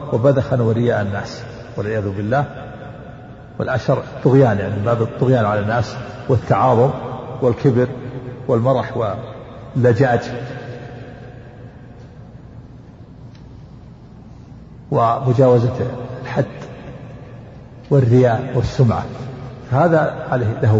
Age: 50-69